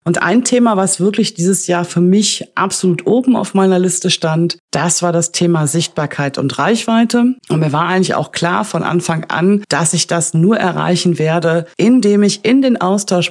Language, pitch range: German, 170-200 Hz